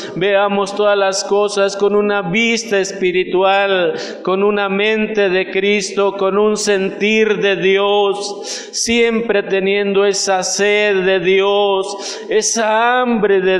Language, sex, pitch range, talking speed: Spanish, male, 195-210 Hz, 120 wpm